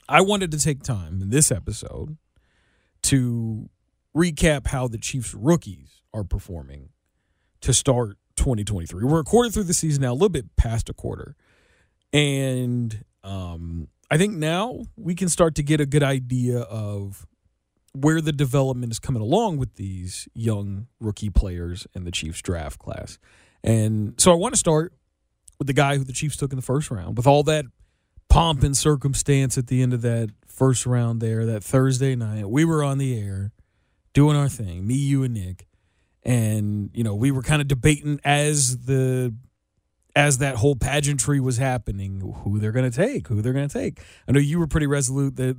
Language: English